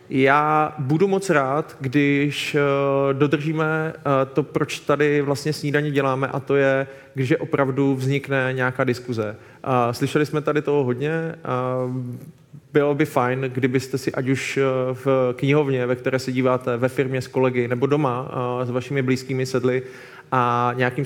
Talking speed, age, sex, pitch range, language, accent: 145 wpm, 20-39, male, 125-145 Hz, Czech, native